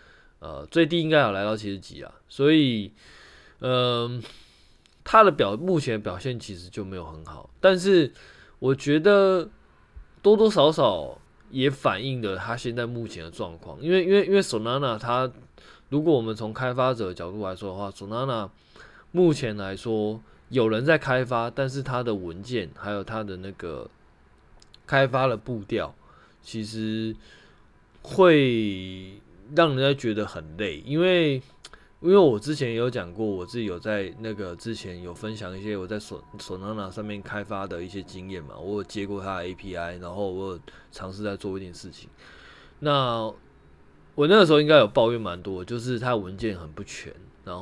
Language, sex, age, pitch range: Chinese, male, 20-39, 95-130 Hz